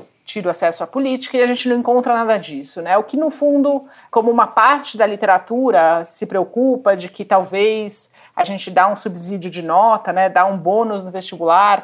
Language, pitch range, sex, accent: Portuguese, 170-220 Hz, female, Brazilian